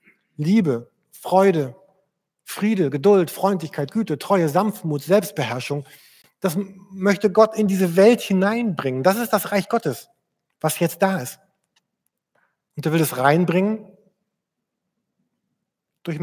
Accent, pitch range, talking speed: German, 160-200 Hz, 115 wpm